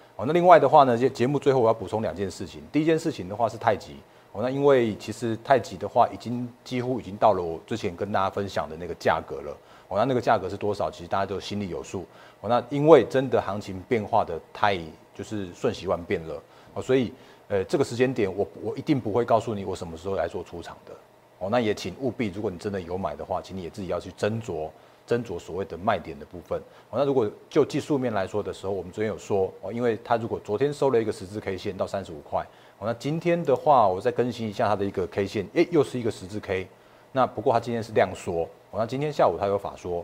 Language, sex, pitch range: Chinese, male, 95-125 Hz